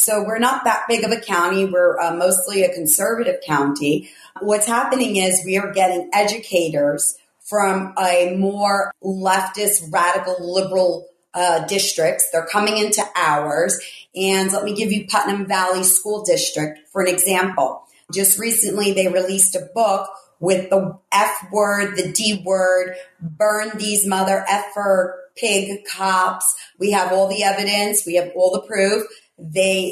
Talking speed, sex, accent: 150 wpm, female, American